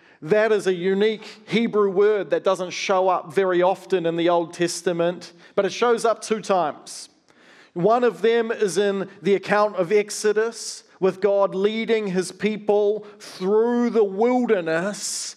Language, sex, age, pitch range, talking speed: English, male, 40-59, 185-220 Hz, 150 wpm